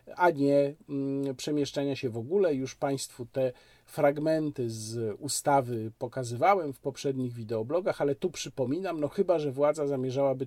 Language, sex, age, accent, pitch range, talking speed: Polish, male, 50-69, native, 130-165 Hz, 140 wpm